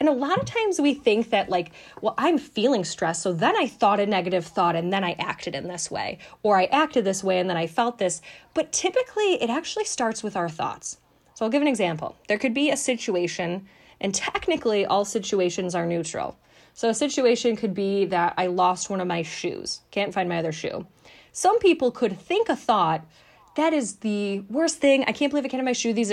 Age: 10-29